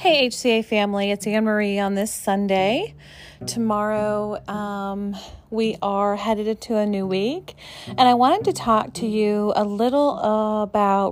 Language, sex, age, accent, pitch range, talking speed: English, female, 30-49, American, 190-230 Hz, 150 wpm